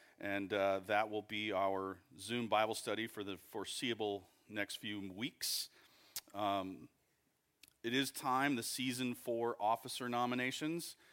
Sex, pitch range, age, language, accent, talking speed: male, 100-120 Hz, 40-59, English, American, 130 wpm